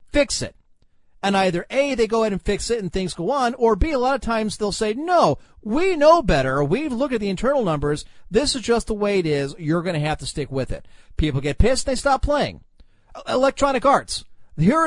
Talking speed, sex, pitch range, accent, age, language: 230 wpm, male, 175-255 Hz, American, 40-59, English